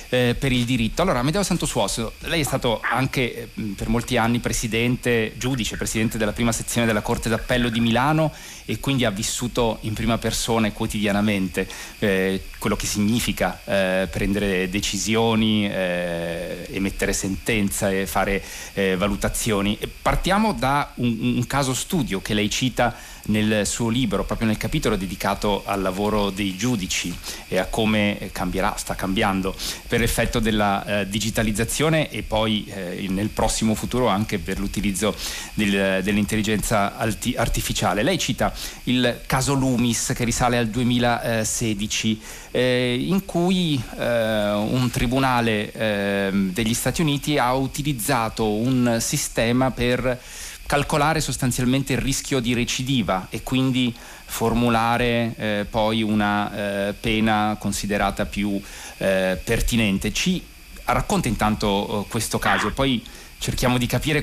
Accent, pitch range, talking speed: native, 100-120 Hz, 135 wpm